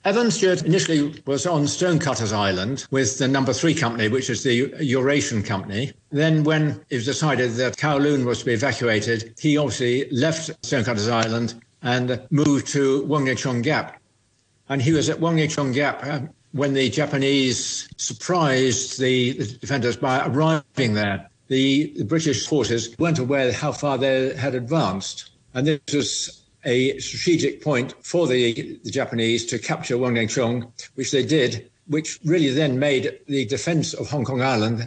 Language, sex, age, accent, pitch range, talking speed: English, male, 60-79, British, 120-150 Hz, 160 wpm